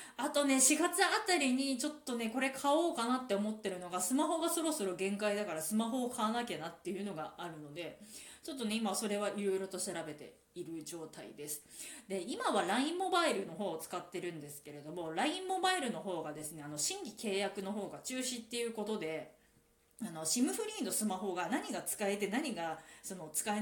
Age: 20-39